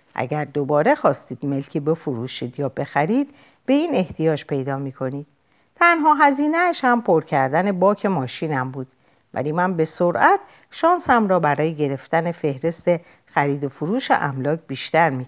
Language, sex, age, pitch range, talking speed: Persian, female, 50-69, 135-200 Hz, 140 wpm